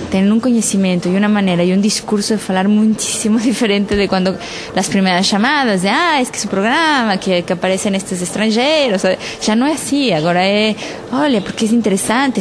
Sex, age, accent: female, 20-39, Mexican